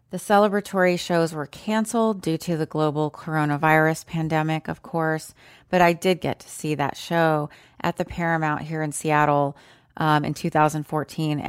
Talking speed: 150 wpm